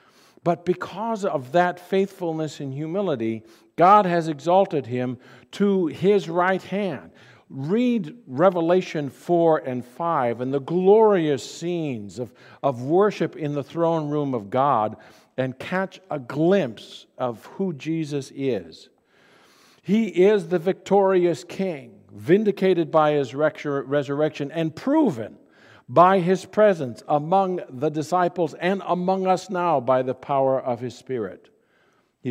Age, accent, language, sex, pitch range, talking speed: 50-69, American, English, male, 140-185 Hz, 130 wpm